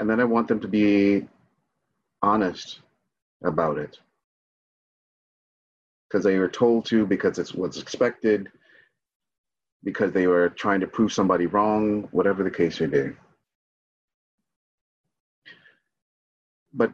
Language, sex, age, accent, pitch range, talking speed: English, male, 30-49, American, 90-115 Hz, 115 wpm